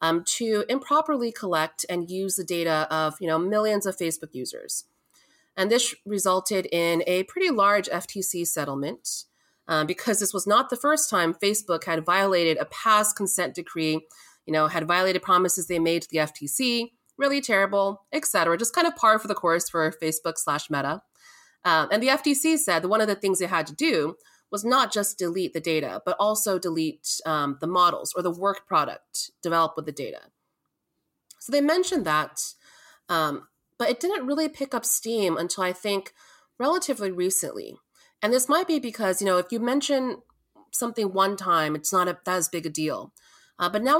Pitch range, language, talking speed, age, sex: 170-230 Hz, English, 185 wpm, 30-49, female